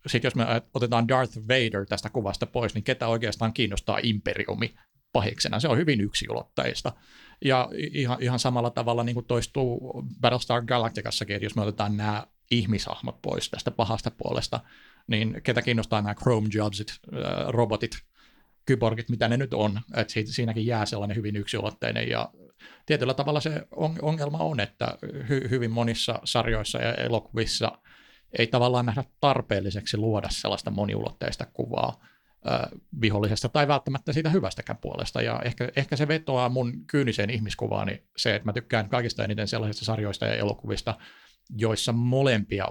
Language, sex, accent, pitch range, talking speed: Finnish, male, native, 105-125 Hz, 145 wpm